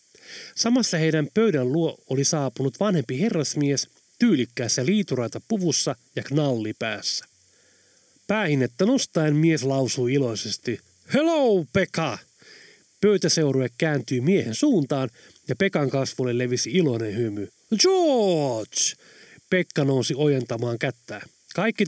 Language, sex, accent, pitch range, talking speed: Finnish, male, native, 125-210 Hz, 100 wpm